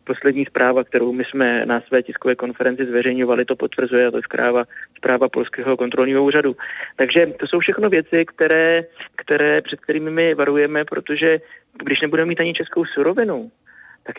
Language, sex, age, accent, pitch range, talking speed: Czech, male, 20-39, native, 130-145 Hz, 165 wpm